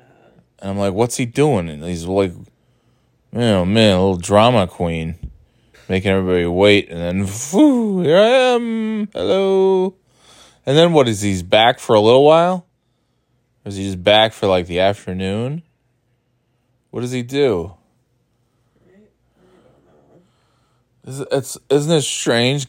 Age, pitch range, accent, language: 20-39, 95-125 Hz, American, English